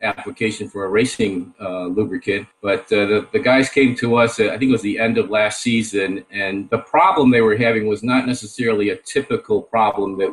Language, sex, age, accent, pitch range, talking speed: English, male, 50-69, American, 95-125 Hz, 215 wpm